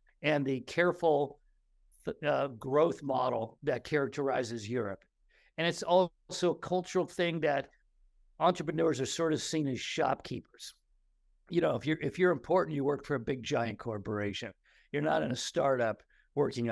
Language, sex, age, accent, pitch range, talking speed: English, male, 50-69, American, 130-175 Hz, 150 wpm